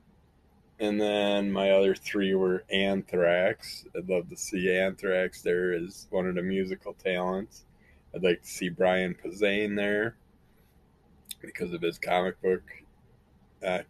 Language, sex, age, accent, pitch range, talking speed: English, male, 20-39, American, 85-100 Hz, 140 wpm